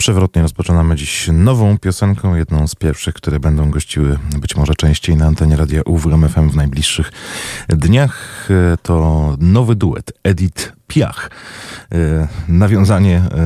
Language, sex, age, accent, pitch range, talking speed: Polish, male, 30-49, native, 75-90 Hz, 120 wpm